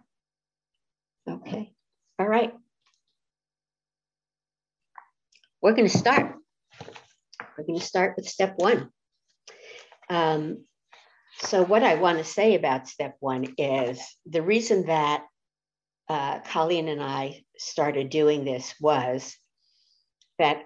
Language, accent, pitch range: English, American, 140-200 Hz